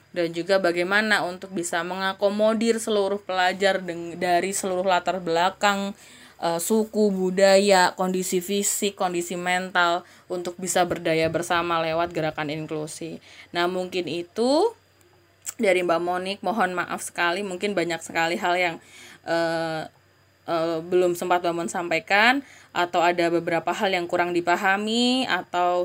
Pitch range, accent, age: 170-190 Hz, native, 20-39